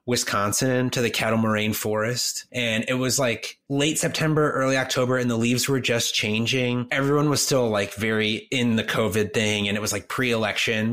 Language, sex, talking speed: English, male, 185 wpm